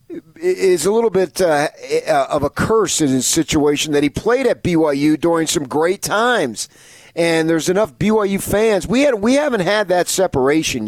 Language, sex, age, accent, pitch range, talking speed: English, male, 40-59, American, 140-205 Hz, 170 wpm